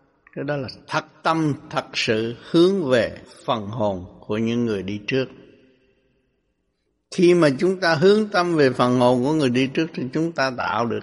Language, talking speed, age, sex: Vietnamese, 180 wpm, 60-79, male